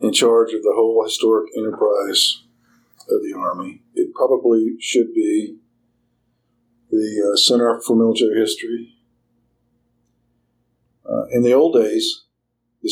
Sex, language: male, English